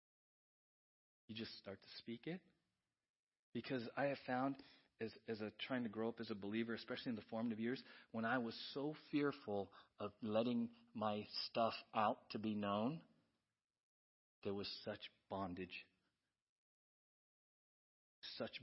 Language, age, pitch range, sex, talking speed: English, 40-59, 105-130 Hz, male, 135 wpm